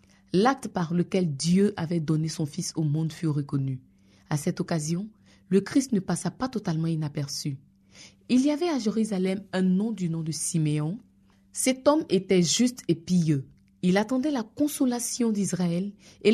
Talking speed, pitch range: 165 wpm, 160-215 Hz